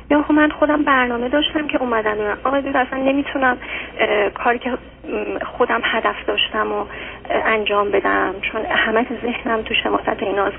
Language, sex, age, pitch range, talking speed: Persian, female, 30-49, 220-275 Hz, 135 wpm